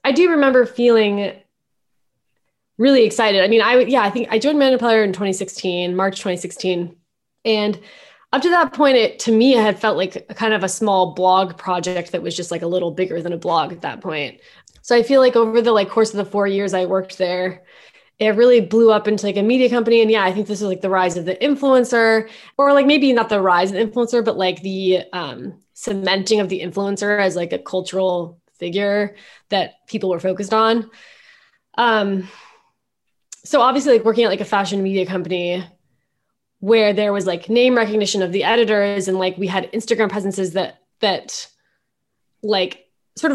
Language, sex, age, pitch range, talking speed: English, female, 20-39, 190-230 Hz, 200 wpm